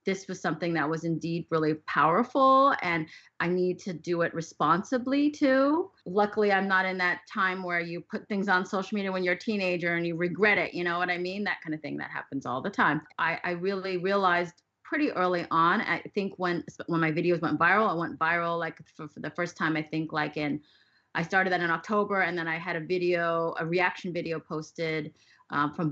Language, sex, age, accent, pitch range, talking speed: English, female, 30-49, American, 165-195 Hz, 220 wpm